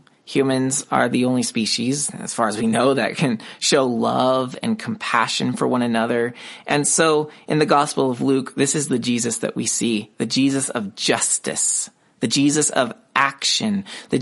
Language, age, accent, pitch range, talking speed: English, 30-49, American, 130-205 Hz, 175 wpm